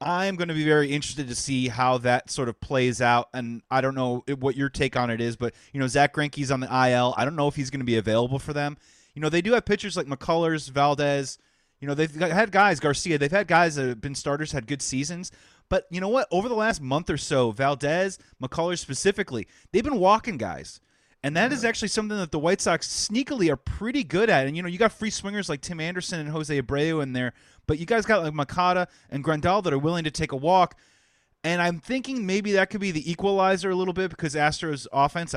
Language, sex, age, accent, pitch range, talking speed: English, male, 30-49, American, 135-180 Hz, 245 wpm